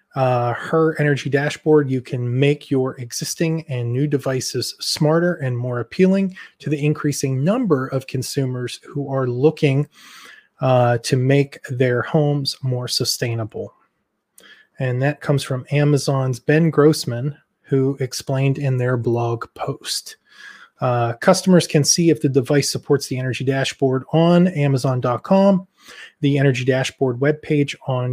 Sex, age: male, 20-39